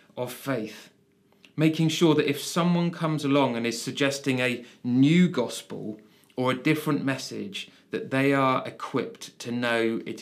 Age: 30-49